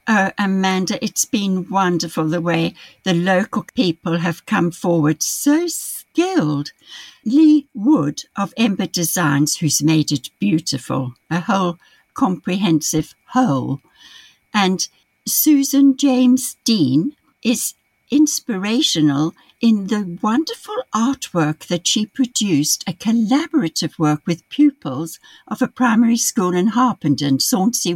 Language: English